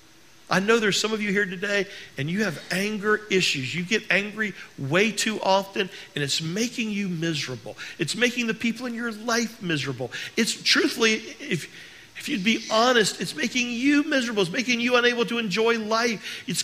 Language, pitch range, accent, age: English, 145-225 Hz, American, 50-69